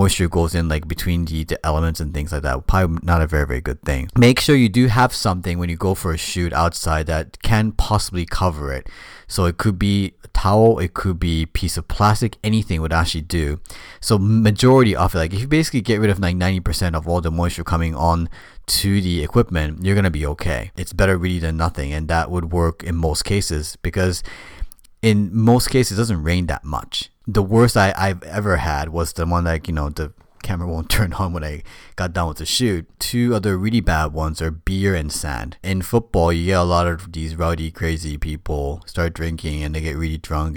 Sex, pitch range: male, 80-95 Hz